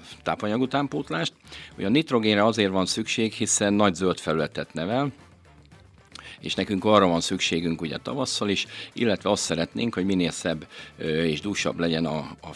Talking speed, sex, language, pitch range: 150 wpm, male, Hungarian, 85-115 Hz